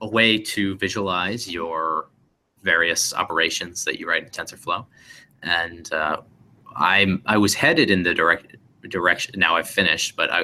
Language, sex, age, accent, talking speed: English, male, 30-49, American, 145 wpm